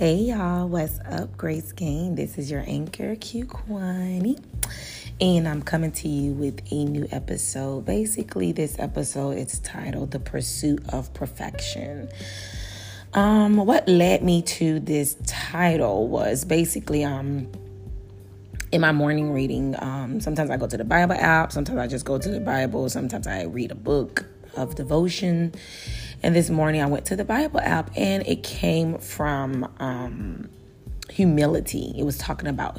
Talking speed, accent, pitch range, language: 155 wpm, American, 100-160 Hz, English